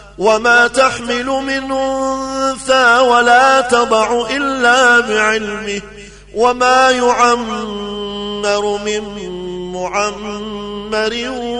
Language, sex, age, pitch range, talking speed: Arabic, male, 30-49, 215-255 Hz, 60 wpm